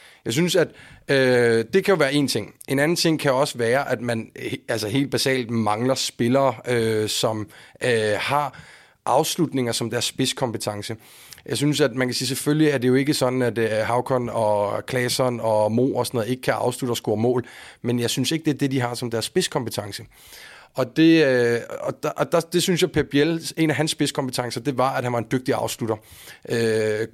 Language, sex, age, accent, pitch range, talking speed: Danish, male, 30-49, native, 120-150 Hz, 215 wpm